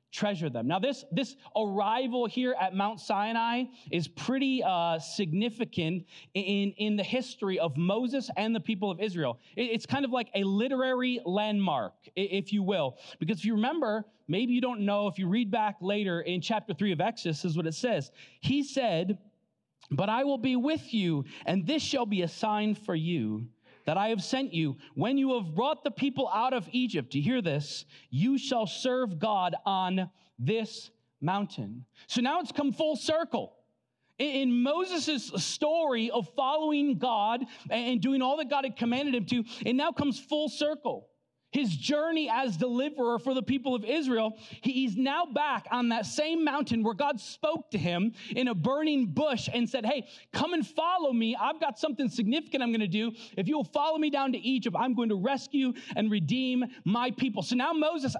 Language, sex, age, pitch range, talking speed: English, male, 30-49, 190-265 Hz, 190 wpm